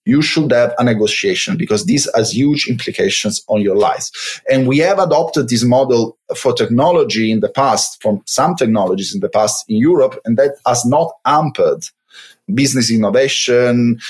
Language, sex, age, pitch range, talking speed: English, male, 30-49, 110-140 Hz, 165 wpm